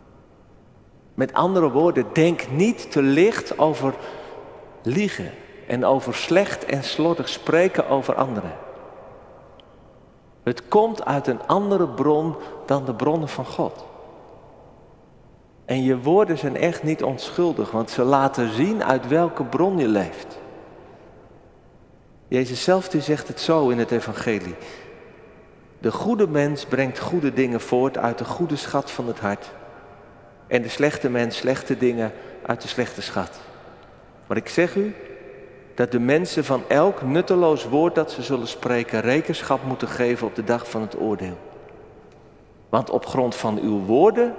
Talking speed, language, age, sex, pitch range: 145 wpm, Dutch, 50-69, male, 120-160 Hz